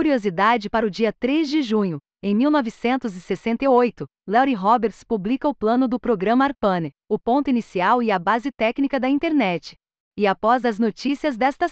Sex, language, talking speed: female, Portuguese, 160 wpm